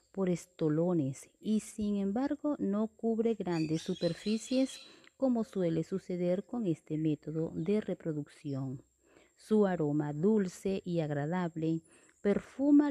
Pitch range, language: 160-210 Hz, Spanish